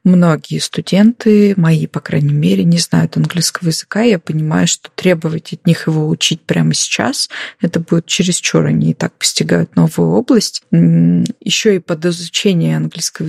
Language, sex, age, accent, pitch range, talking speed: Russian, female, 20-39, native, 160-200 Hz, 155 wpm